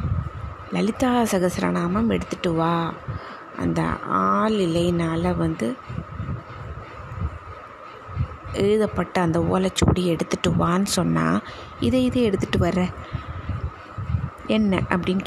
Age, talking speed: 20-39, 75 wpm